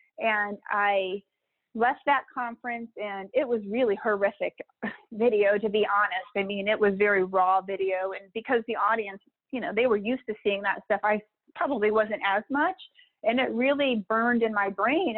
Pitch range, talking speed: 205-245 Hz, 180 wpm